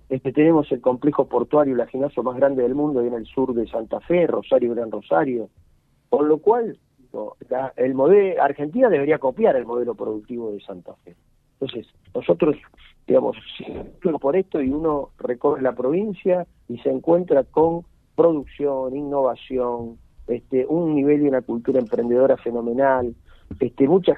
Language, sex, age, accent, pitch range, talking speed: Spanish, male, 40-59, Argentinian, 120-155 Hz, 150 wpm